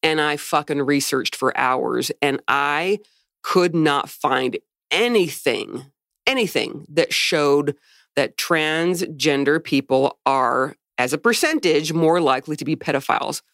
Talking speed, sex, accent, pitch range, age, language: 120 wpm, female, American, 145-210 Hz, 40-59, English